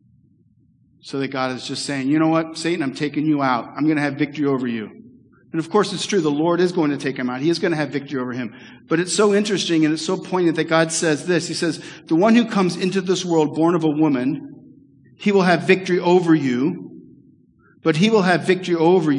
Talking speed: 245 wpm